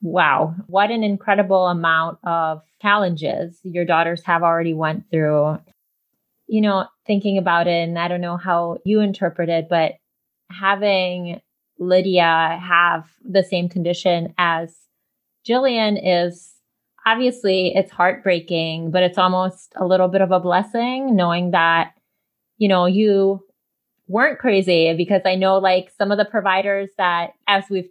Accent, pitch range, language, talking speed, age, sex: American, 170-195 Hz, English, 140 wpm, 20-39, female